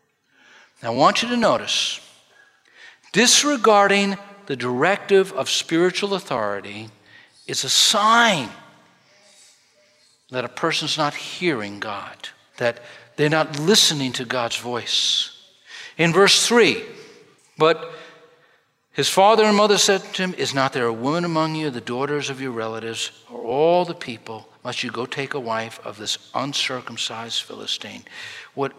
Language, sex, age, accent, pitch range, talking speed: English, male, 60-79, American, 140-220 Hz, 140 wpm